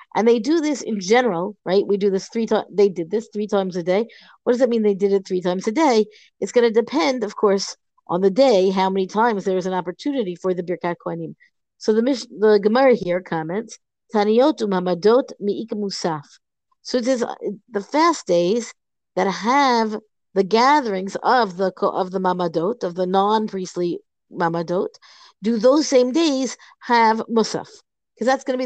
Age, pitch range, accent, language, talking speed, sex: 50-69, 195-250 Hz, American, English, 195 wpm, female